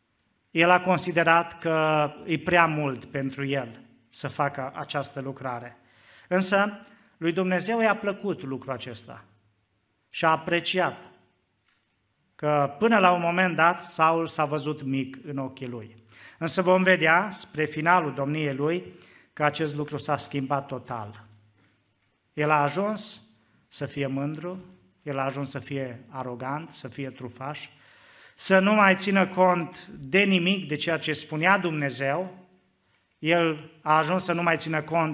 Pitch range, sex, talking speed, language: 135-165 Hz, male, 145 wpm, Romanian